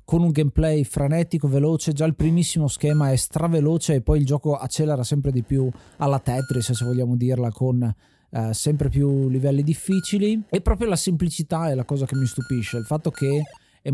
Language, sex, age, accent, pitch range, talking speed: Italian, male, 30-49, native, 130-155 Hz, 190 wpm